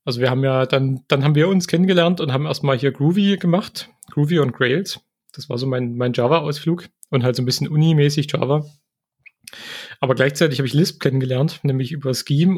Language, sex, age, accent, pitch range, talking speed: German, male, 30-49, German, 130-165 Hz, 195 wpm